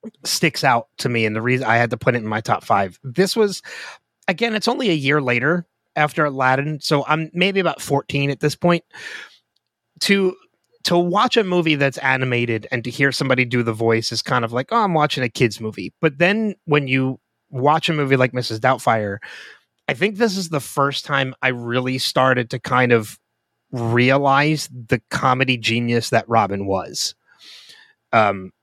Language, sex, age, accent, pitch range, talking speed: English, male, 30-49, American, 115-145 Hz, 185 wpm